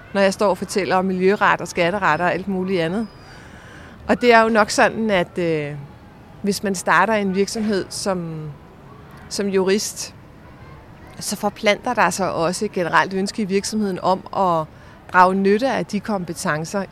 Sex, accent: female, native